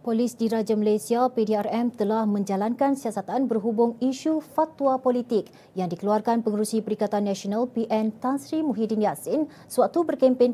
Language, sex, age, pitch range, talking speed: Malay, female, 30-49, 210-260 Hz, 130 wpm